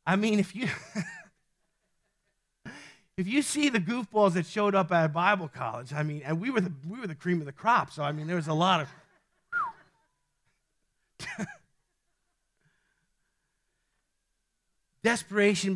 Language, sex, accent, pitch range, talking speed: English, male, American, 170-220 Hz, 140 wpm